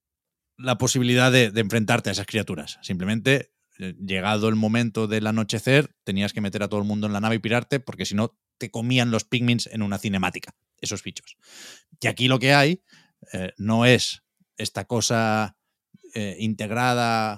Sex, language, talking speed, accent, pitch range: male, Spanish, 175 wpm, Spanish, 100-120 Hz